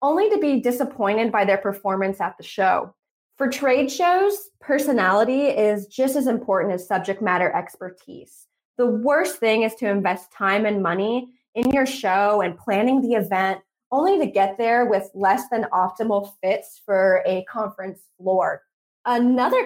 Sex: female